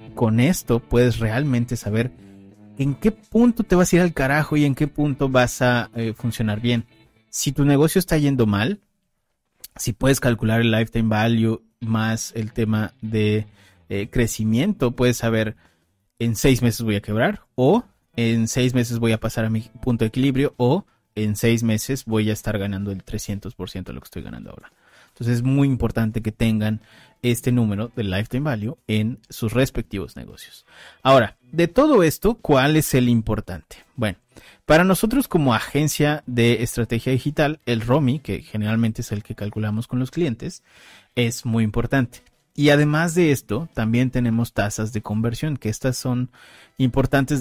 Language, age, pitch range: Spanish, 30-49, 110-130 Hz